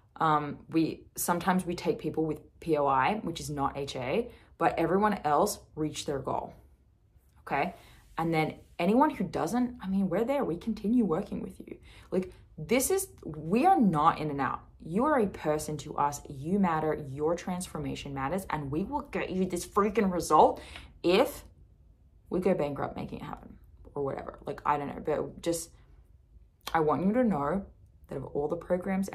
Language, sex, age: English, female, 20-39